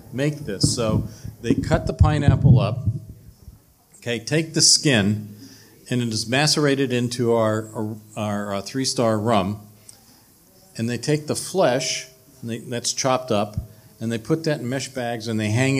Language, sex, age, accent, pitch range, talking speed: English, male, 50-69, American, 110-125 Hz, 160 wpm